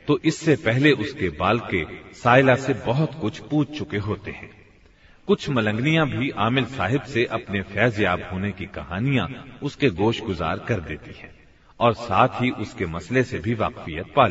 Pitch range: 95-130 Hz